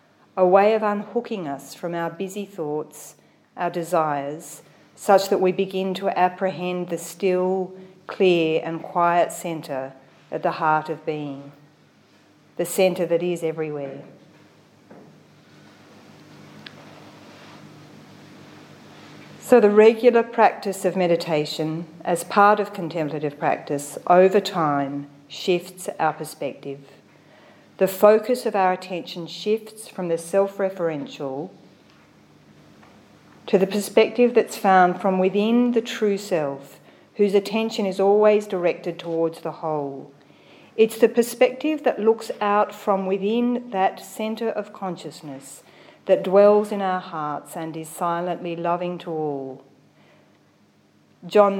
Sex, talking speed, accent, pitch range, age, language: female, 115 wpm, Australian, 160-205 Hz, 40-59, English